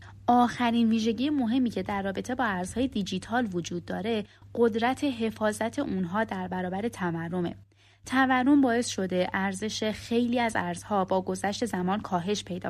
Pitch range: 185-245 Hz